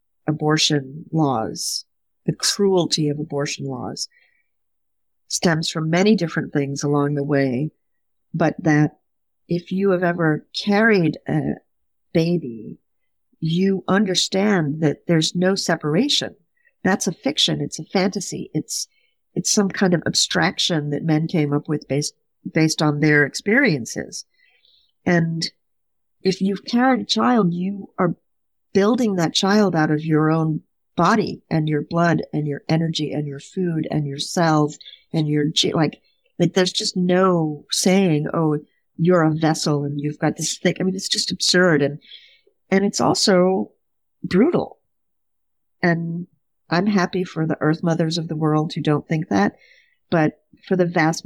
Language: English